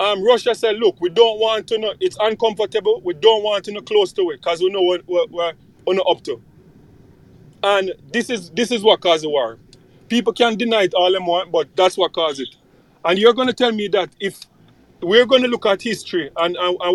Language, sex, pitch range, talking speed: English, male, 175-225 Hz, 235 wpm